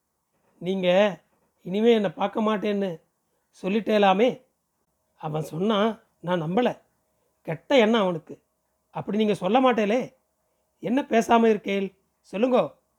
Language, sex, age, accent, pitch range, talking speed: Tamil, male, 30-49, native, 185-230 Hz, 95 wpm